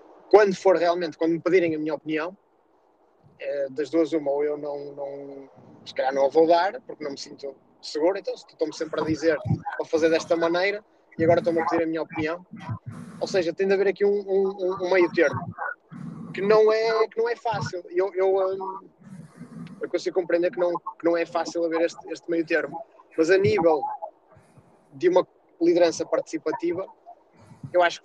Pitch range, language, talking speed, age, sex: 160-195 Hz, Portuguese, 195 wpm, 20-39, male